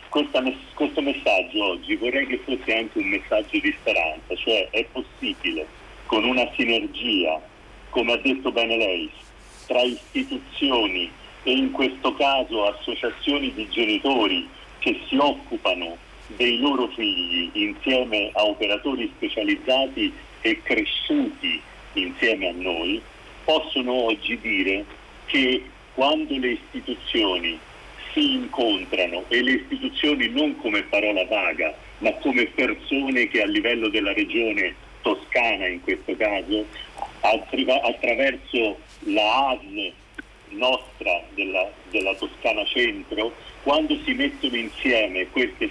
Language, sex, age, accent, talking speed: Italian, male, 50-69, native, 115 wpm